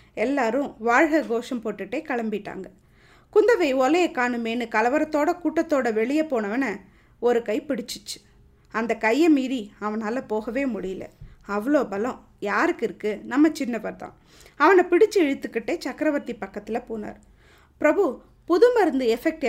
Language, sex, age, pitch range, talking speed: Tamil, female, 20-39, 230-315 Hz, 115 wpm